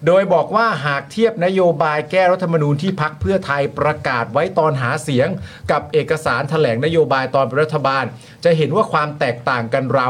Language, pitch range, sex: Thai, 125-165 Hz, male